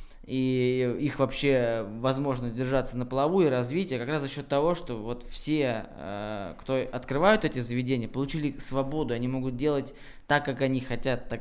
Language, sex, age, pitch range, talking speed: Russian, male, 20-39, 120-140 Hz, 165 wpm